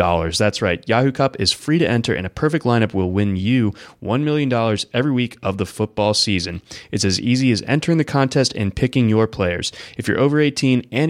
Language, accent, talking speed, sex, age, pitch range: English, American, 210 wpm, male, 20-39, 105-140 Hz